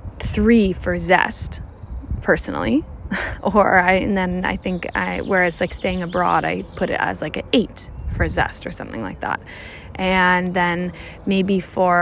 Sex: female